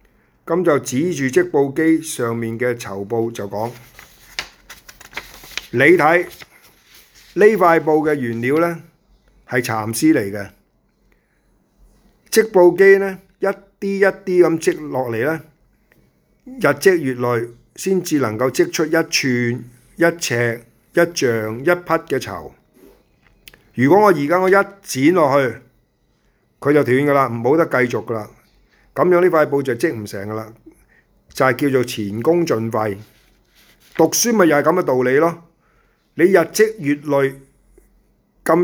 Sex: male